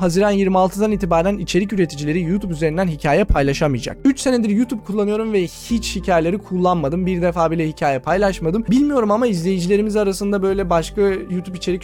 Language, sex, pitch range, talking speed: Turkish, male, 165-205 Hz, 150 wpm